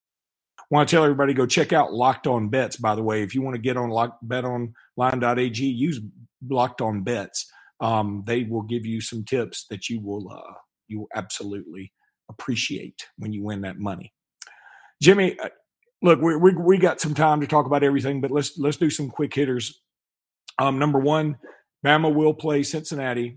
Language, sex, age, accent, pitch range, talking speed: English, male, 40-59, American, 110-145 Hz, 185 wpm